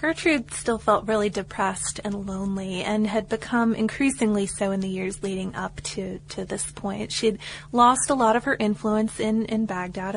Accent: American